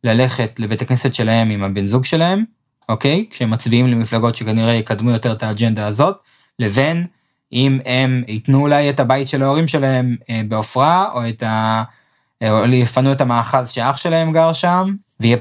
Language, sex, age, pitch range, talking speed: Hebrew, male, 20-39, 110-140 Hz, 155 wpm